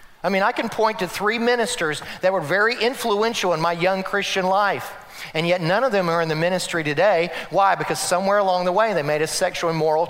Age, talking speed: 40-59, 230 wpm